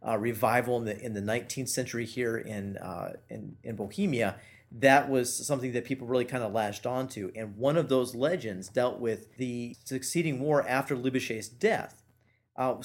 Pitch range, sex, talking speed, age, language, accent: 115-150 Hz, male, 180 wpm, 40-59, English, American